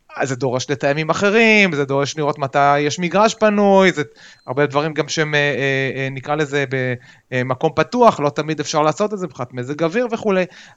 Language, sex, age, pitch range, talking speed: Hebrew, male, 30-49, 135-190 Hz, 165 wpm